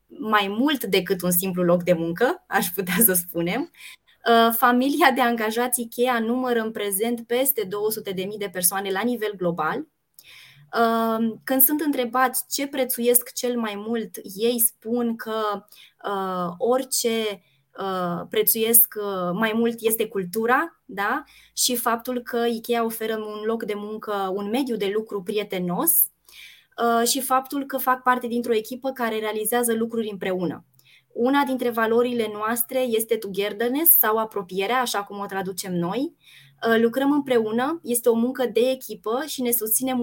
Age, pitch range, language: 20-39, 205-245 Hz, Romanian